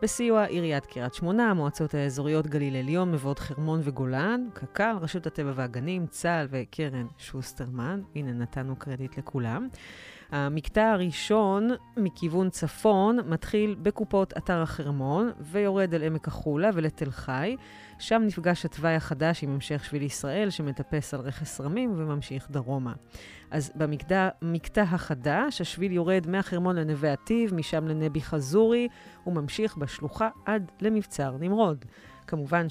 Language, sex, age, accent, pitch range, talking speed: Hebrew, female, 30-49, native, 145-185 Hz, 125 wpm